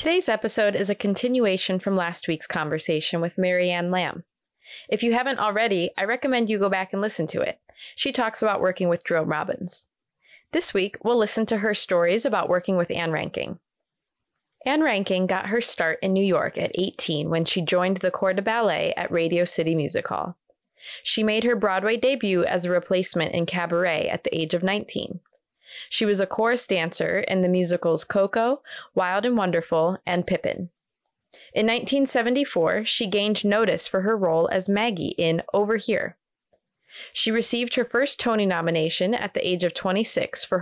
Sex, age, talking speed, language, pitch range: female, 20-39, 175 wpm, English, 175-225 Hz